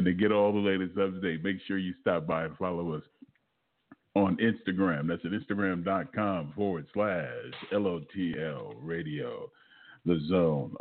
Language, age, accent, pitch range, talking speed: English, 40-59, American, 95-110 Hz, 165 wpm